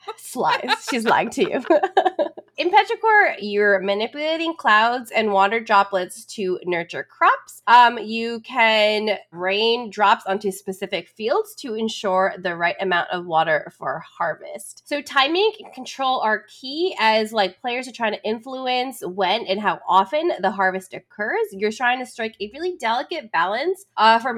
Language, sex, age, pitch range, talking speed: English, female, 20-39, 195-280 Hz, 155 wpm